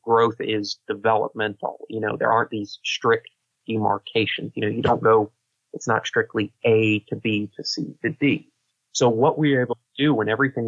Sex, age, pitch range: male, 30-49, 110-125 Hz